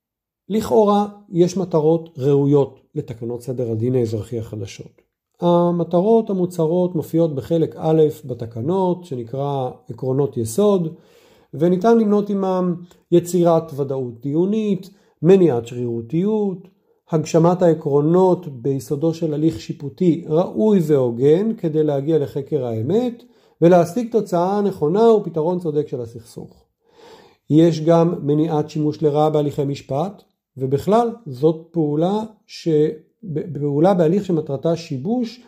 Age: 50-69